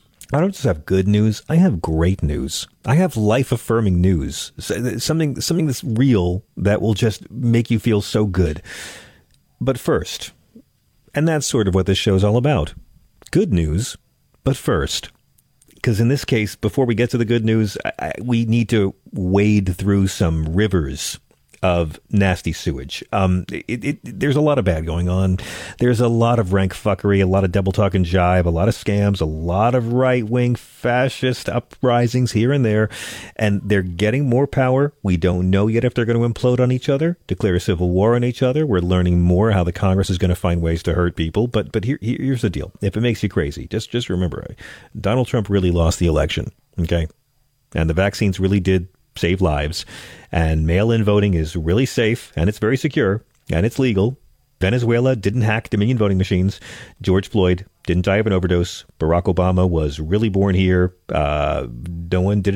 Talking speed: 195 wpm